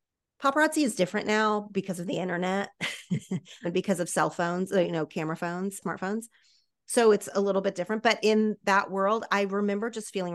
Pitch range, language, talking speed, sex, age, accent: 170-205 Hz, English, 185 wpm, female, 30-49, American